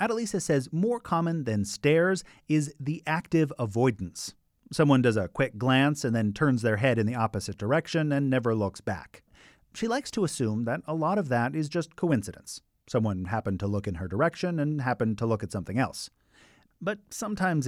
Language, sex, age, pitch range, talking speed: English, male, 40-59, 110-155 Hz, 190 wpm